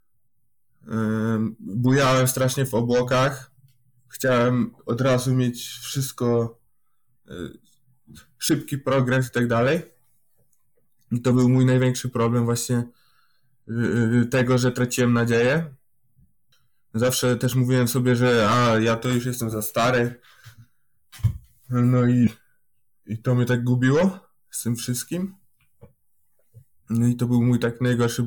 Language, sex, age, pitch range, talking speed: Polish, male, 20-39, 115-135 Hz, 110 wpm